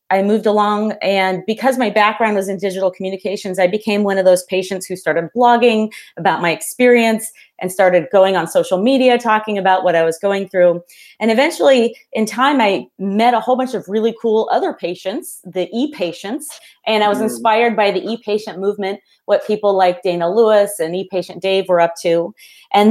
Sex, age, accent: female, 30-49, American